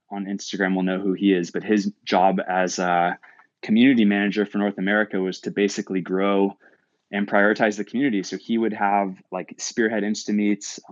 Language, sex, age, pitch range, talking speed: English, male, 20-39, 95-105 Hz, 175 wpm